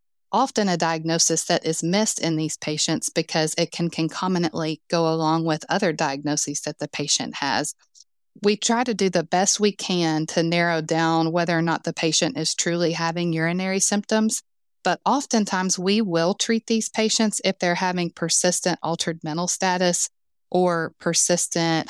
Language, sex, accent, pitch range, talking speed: English, female, American, 160-190 Hz, 165 wpm